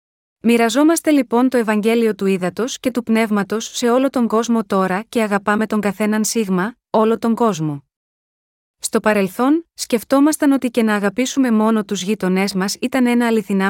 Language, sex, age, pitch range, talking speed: Greek, female, 30-49, 200-250 Hz, 160 wpm